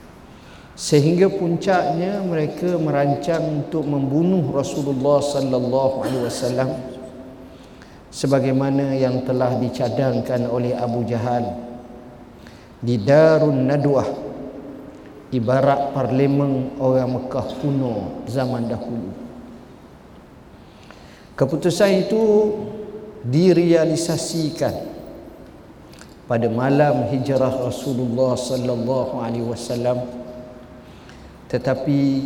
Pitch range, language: 120-145 Hz, Malay